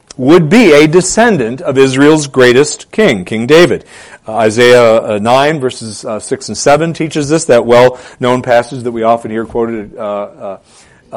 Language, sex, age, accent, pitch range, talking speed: English, male, 40-59, American, 120-160 Hz, 165 wpm